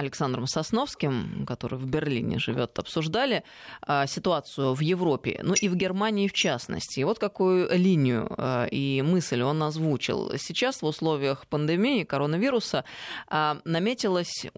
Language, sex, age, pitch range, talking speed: Russian, female, 20-39, 145-190 Hz, 120 wpm